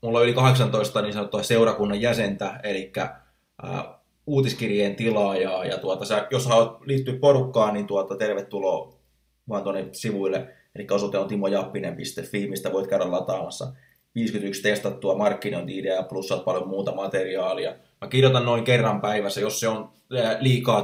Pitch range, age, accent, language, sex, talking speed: 100-125 Hz, 20-39, native, Finnish, male, 140 wpm